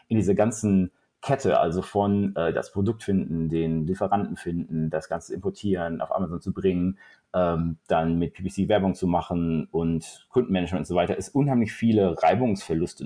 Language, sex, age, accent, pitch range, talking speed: German, male, 30-49, German, 85-105 Hz, 165 wpm